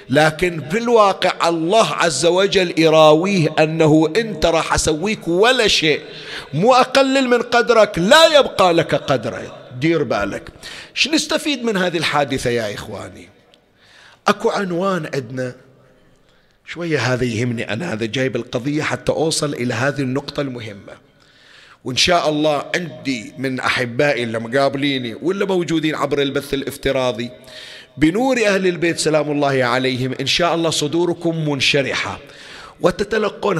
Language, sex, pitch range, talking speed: Arabic, male, 135-185 Hz, 125 wpm